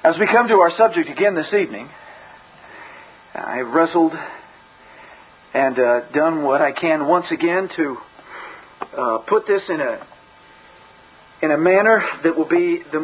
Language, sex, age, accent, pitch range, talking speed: English, male, 50-69, American, 140-180 Hz, 150 wpm